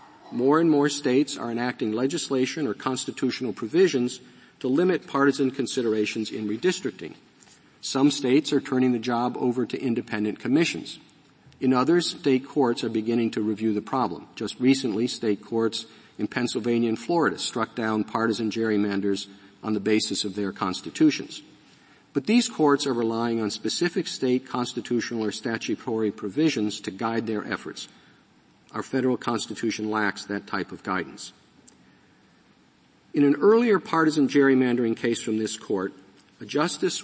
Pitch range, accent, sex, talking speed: 110-135 Hz, American, male, 145 wpm